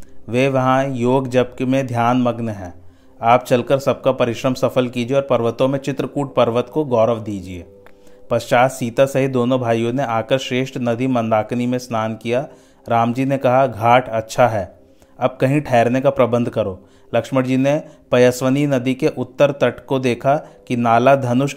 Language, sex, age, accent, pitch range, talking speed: Hindi, male, 30-49, native, 115-135 Hz, 170 wpm